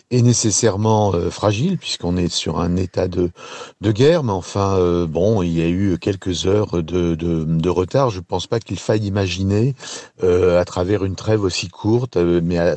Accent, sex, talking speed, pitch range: French, male, 200 wpm, 85-105 Hz